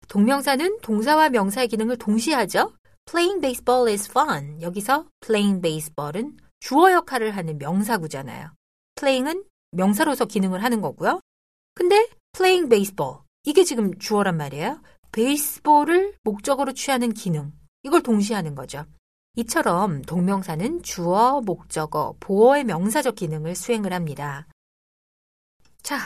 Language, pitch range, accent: Korean, 170-275 Hz, native